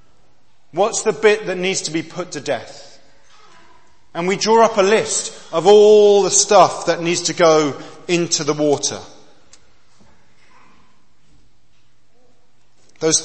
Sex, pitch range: male, 160-210 Hz